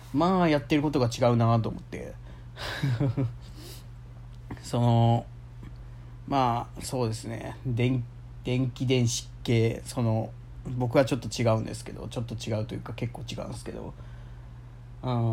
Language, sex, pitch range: Japanese, male, 115-135 Hz